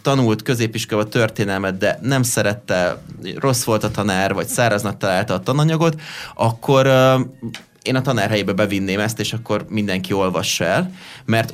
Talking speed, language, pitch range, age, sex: 150 wpm, Hungarian, 100-125 Hz, 30-49, male